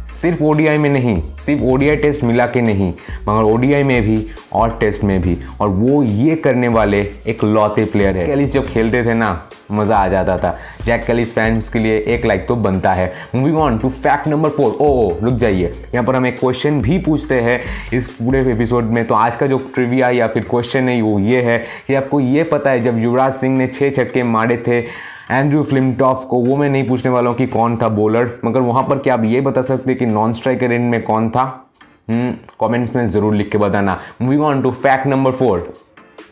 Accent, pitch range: native, 110-135 Hz